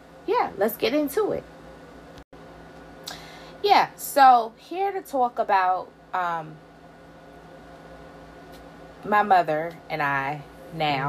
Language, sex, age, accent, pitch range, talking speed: English, female, 20-39, American, 160-230 Hz, 90 wpm